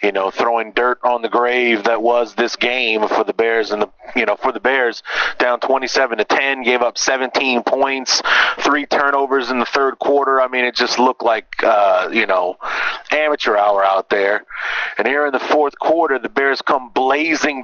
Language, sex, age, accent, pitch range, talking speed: English, male, 30-49, American, 125-145 Hz, 195 wpm